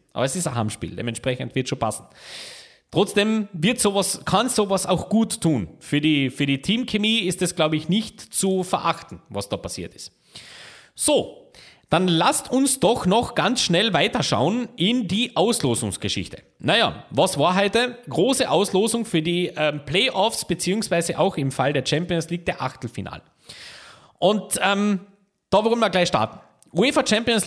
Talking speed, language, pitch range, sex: 160 wpm, German, 135-200 Hz, male